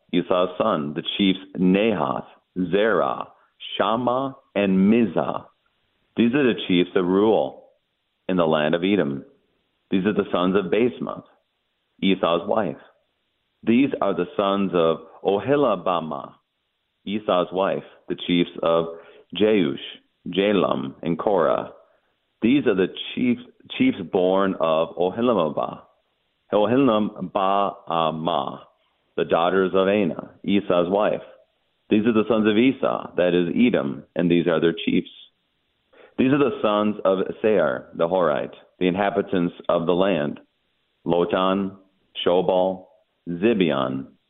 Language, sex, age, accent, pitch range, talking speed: English, male, 40-59, American, 85-110 Hz, 120 wpm